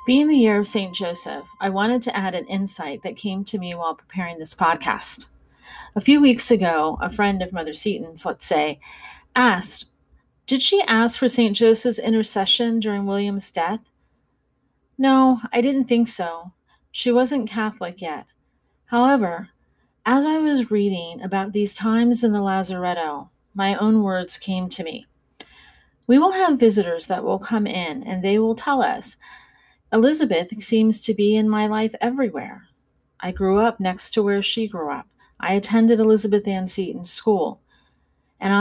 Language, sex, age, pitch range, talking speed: English, female, 30-49, 190-240 Hz, 165 wpm